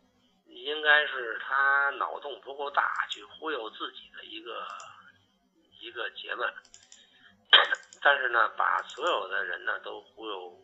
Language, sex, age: Chinese, male, 50-69